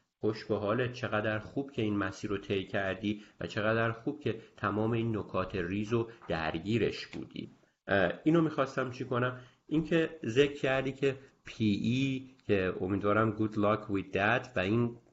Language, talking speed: Persian, 145 wpm